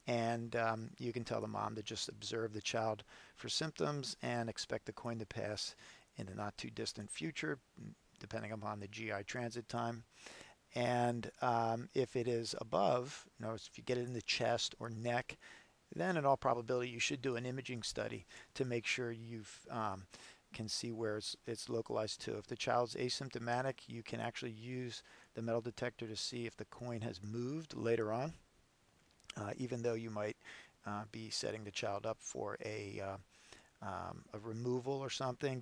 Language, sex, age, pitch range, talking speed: English, male, 50-69, 110-125 Hz, 180 wpm